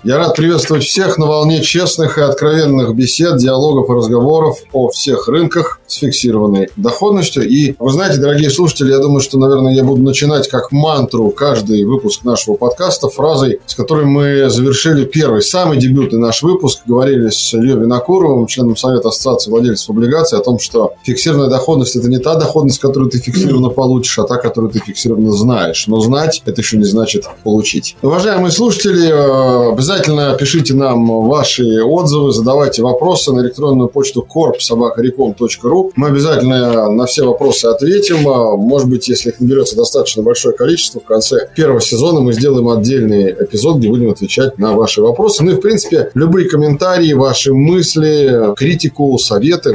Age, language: 20-39, Russian